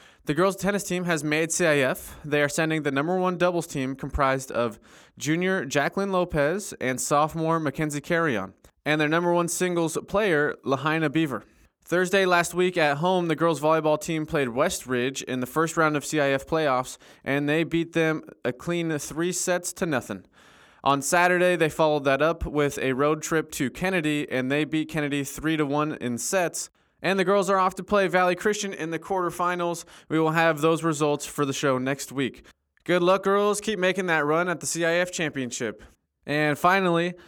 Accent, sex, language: American, male, English